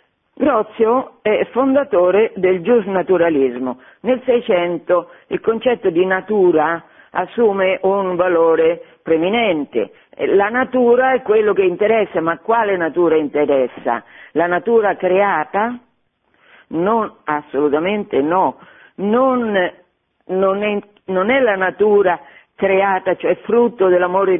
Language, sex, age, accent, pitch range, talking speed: Italian, female, 50-69, native, 165-235 Hz, 105 wpm